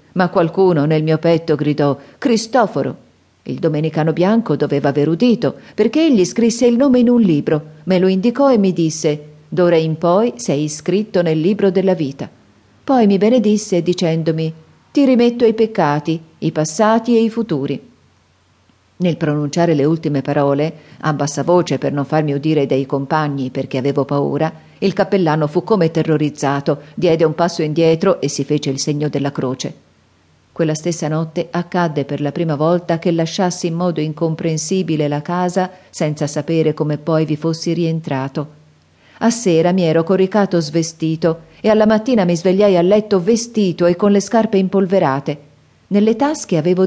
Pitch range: 150-190 Hz